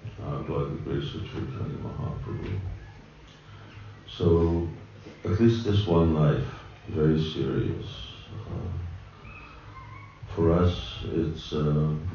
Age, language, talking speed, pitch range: 50-69, English, 105 wpm, 80-110 Hz